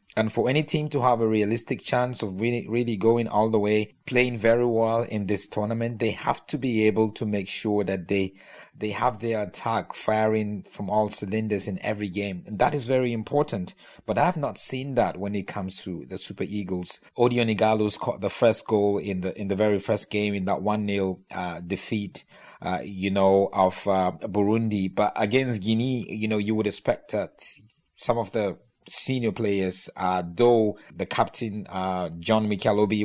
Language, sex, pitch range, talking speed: English, male, 100-115 Hz, 190 wpm